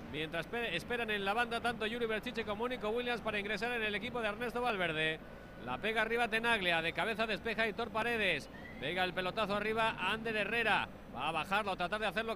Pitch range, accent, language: 205-240 Hz, Spanish, Spanish